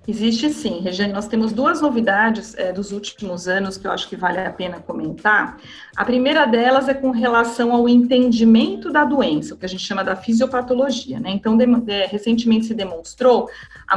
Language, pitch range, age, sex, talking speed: Portuguese, 185-240 Hz, 40-59, female, 175 wpm